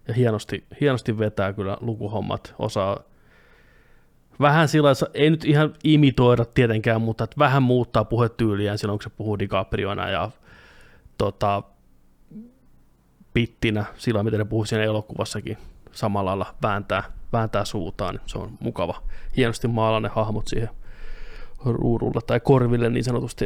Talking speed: 130 wpm